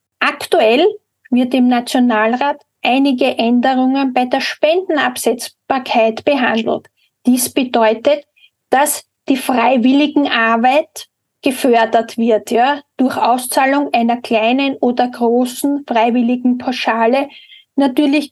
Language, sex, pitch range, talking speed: German, female, 240-285 Hz, 90 wpm